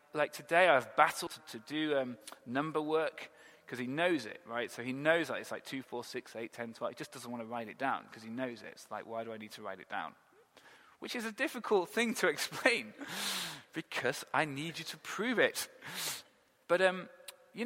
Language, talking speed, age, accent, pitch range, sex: English, 220 wpm, 30-49, British, 125-180 Hz, male